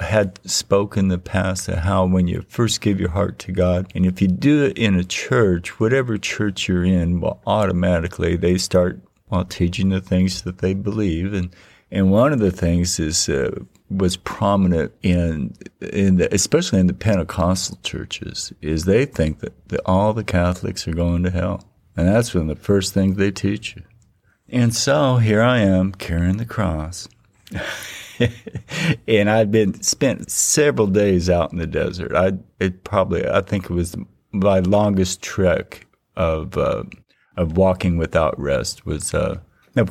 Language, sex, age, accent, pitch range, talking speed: English, male, 50-69, American, 90-100 Hz, 170 wpm